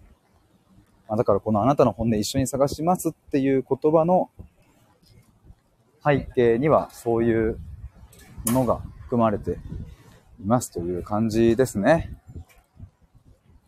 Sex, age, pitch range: male, 30-49, 100-145 Hz